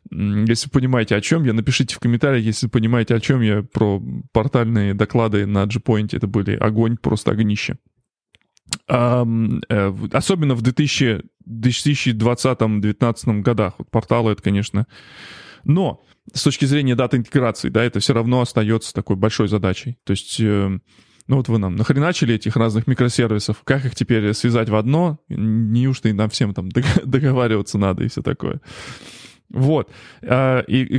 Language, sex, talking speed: Russian, male, 145 wpm